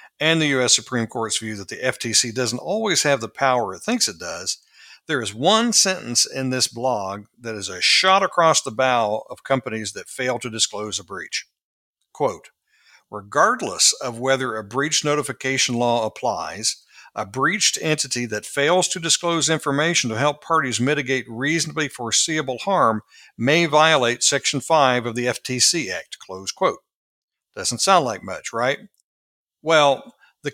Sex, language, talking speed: male, English, 160 wpm